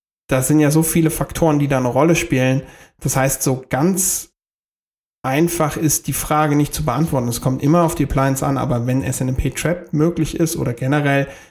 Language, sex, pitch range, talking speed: German, male, 130-155 Hz, 190 wpm